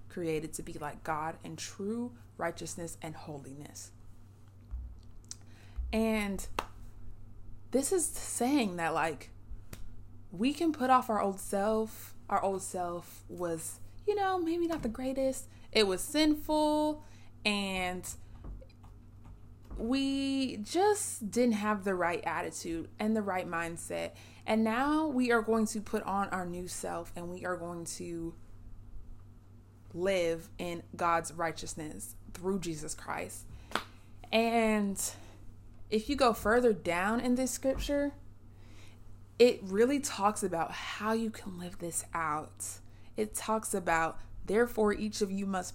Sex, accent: female, American